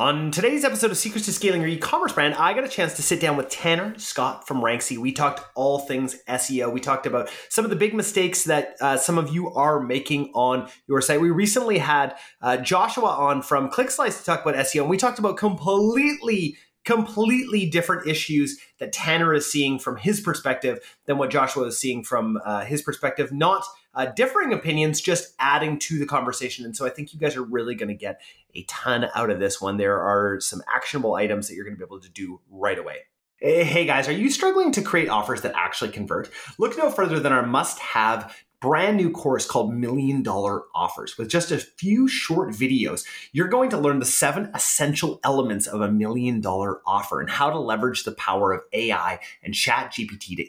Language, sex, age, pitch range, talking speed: English, male, 30-49, 125-195 Hz, 210 wpm